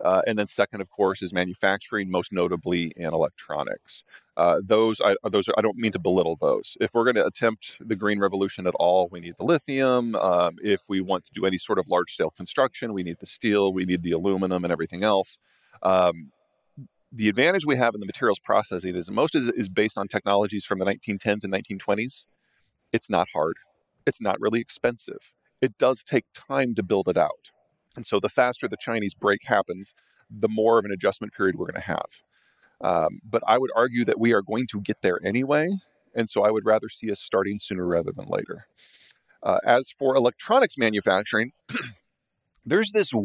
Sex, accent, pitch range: male, American, 95-115 Hz